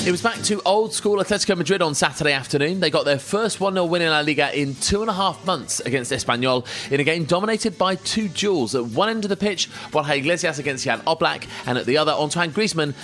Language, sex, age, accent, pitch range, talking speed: English, male, 30-49, British, 125-170 Hz, 235 wpm